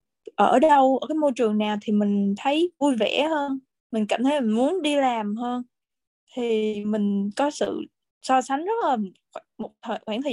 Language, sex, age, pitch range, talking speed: Vietnamese, female, 10-29, 210-285 Hz, 190 wpm